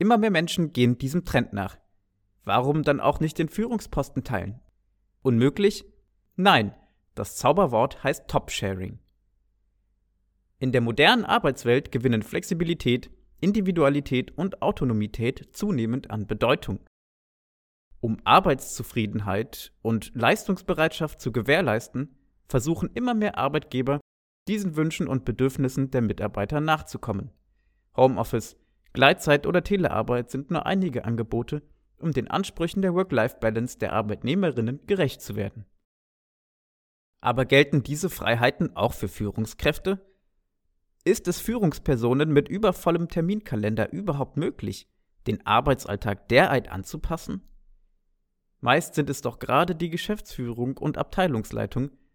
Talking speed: 110 wpm